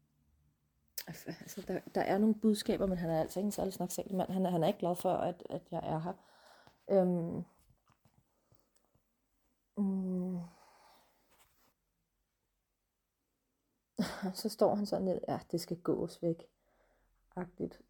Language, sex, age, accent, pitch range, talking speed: Danish, female, 30-49, native, 175-195 Hz, 135 wpm